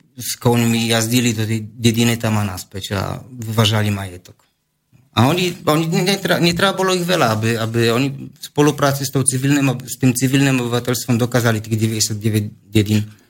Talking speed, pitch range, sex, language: 155 wpm, 115-145 Hz, male, Slovak